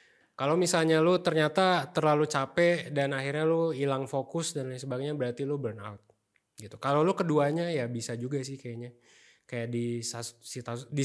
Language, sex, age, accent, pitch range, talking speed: Indonesian, male, 20-39, native, 120-155 Hz, 165 wpm